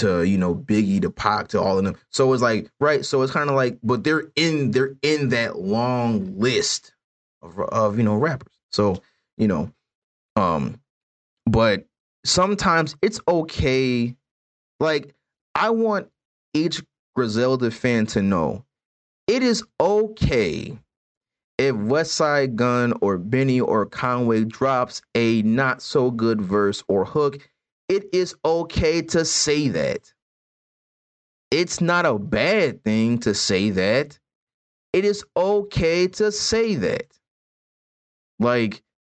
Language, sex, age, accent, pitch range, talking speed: English, male, 30-49, American, 115-175 Hz, 135 wpm